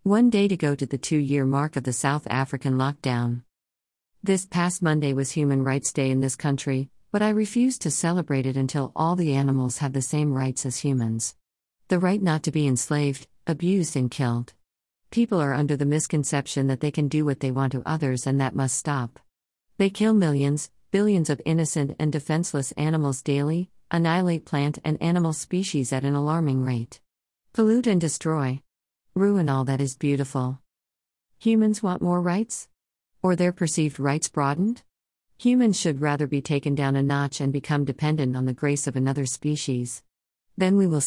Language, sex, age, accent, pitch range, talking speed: English, female, 50-69, American, 135-170 Hz, 180 wpm